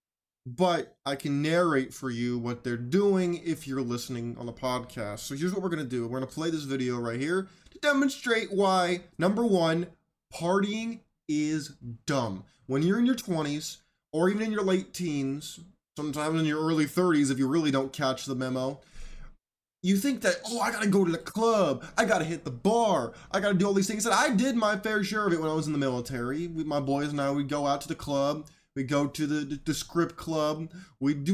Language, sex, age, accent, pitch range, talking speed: English, male, 20-39, American, 135-190 Hz, 215 wpm